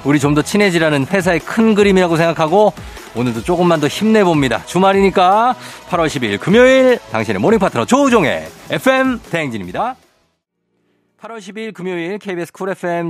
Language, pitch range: Korean, 105-170 Hz